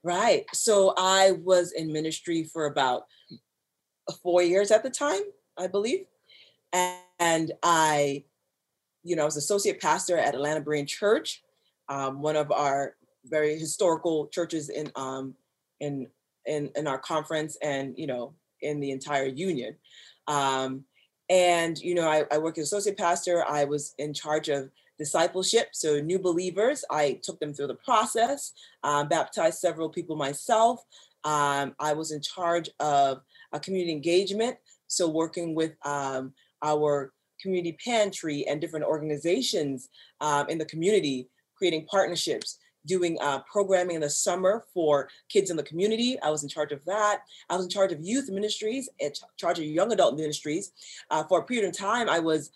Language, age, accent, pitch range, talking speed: English, 30-49, American, 145-185 Hz, 160 wpm